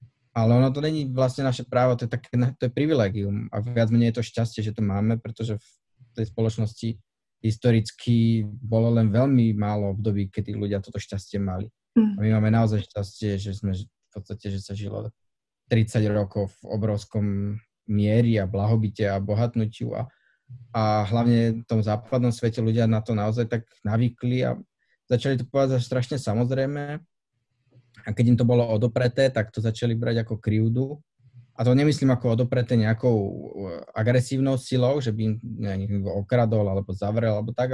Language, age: Slovak, 20-39